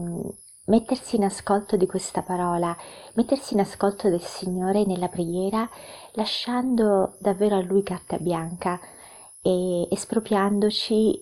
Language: Italian